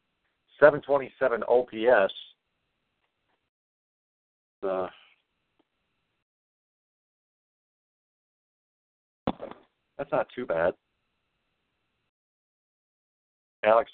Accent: American